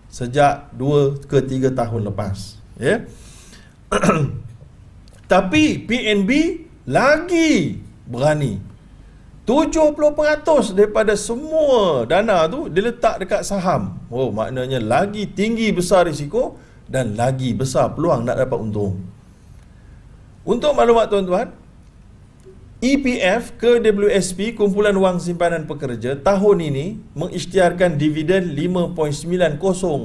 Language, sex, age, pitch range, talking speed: Malayalam, male, 50-69, 140-220 Hz, 90 wpm